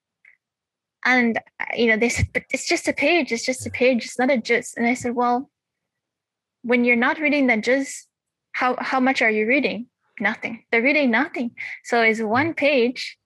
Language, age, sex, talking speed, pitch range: English, 10-29, female, 190 wpm, 220-275 Hz